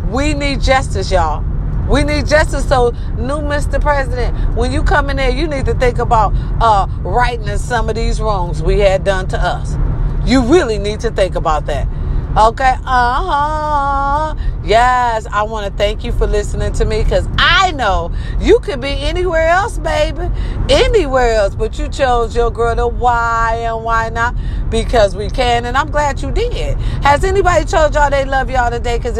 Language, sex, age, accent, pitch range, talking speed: English, female, 40-59, American, 230-355 Hz, 185 wpm